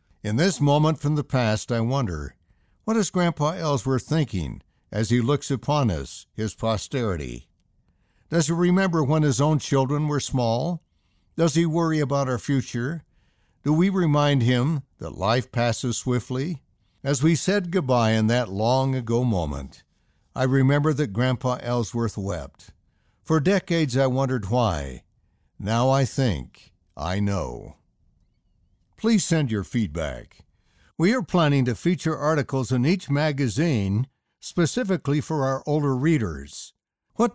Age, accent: 60-79, American